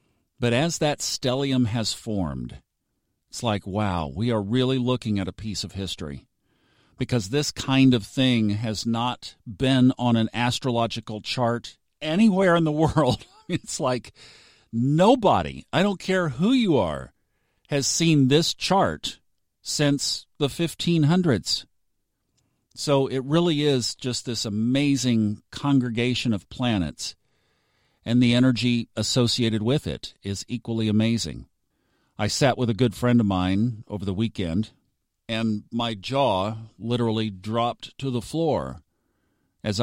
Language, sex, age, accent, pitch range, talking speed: English, male, 50-69, American, 100-130 Hz, 135 wpm